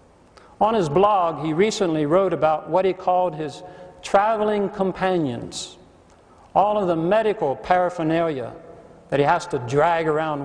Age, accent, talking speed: 60-79, American, 140 wpm